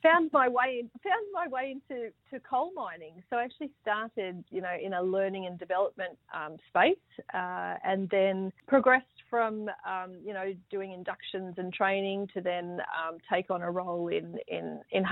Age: 40-59